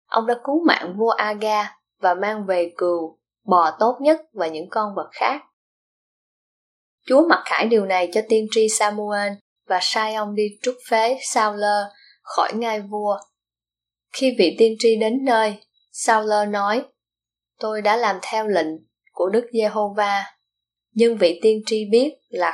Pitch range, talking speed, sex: 195-230 Hz, 160 wpm, female